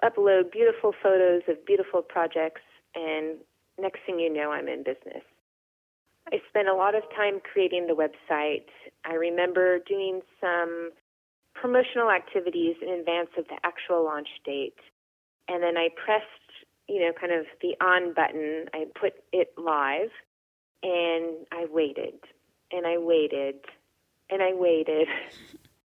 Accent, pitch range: American, 160-200 Hz